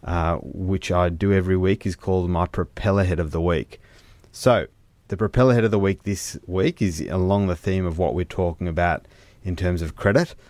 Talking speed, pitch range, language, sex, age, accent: 205 wpm, 85-100 Hz, English, male, 30-49, Australian